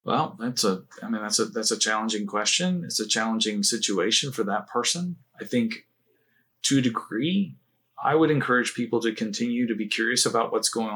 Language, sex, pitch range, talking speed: English, male, 105-155 Hz, 190 wpm